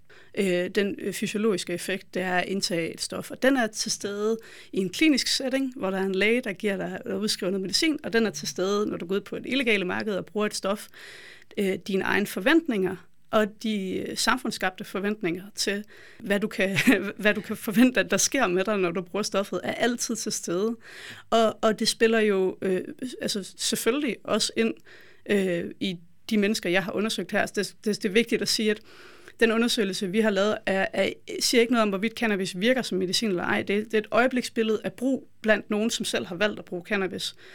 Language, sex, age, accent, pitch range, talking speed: Danish, female, 30-49, native, 190-225 Hz, 215 wpm